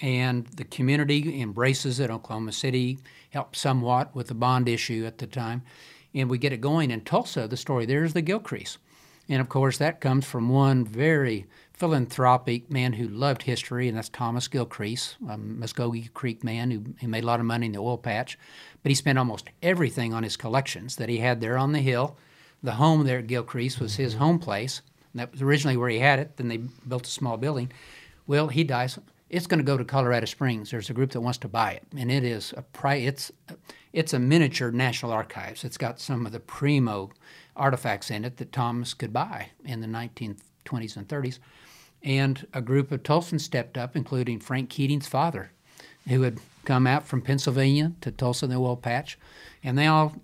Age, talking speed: 50-69, 205 wpm